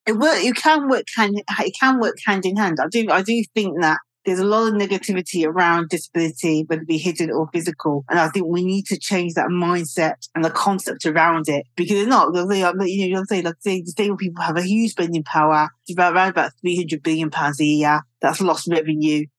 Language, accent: English, British